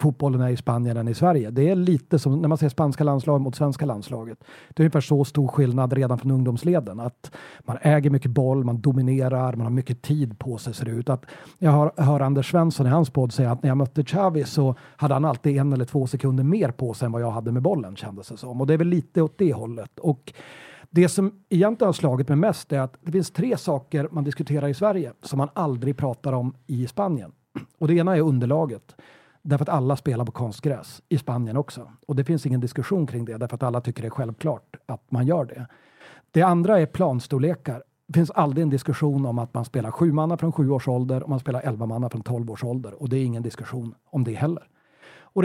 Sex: male